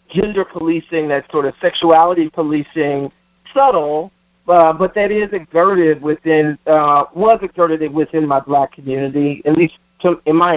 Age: 50-69